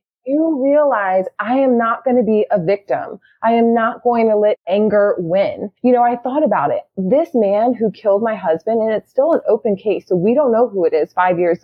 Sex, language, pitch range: female, English, 205-260 Hz